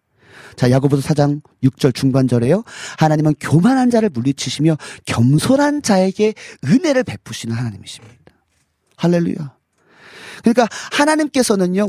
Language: Korean